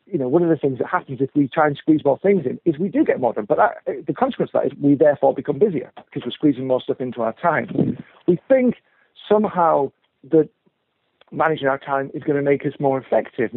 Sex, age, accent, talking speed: male, 50-69, British, 240 wpm